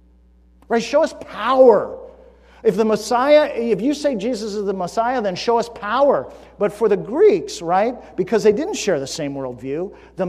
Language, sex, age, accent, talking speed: English, male, 50-69, American, 180 wpm